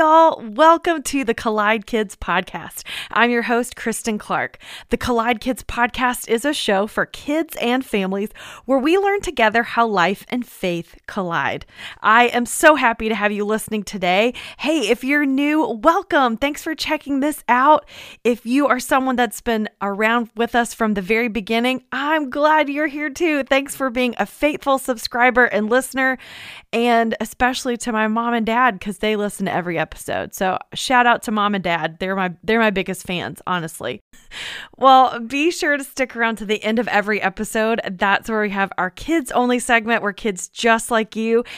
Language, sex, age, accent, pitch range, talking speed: English, female, 30-49, American, 210-265 Hz, 185 wpm